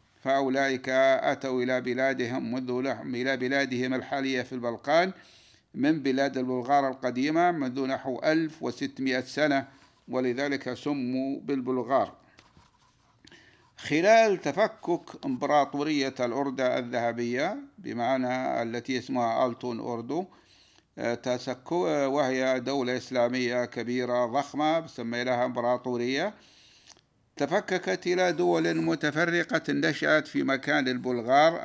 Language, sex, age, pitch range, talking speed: Arabic, male, 60-79, 125-145 Hz, 90 wpm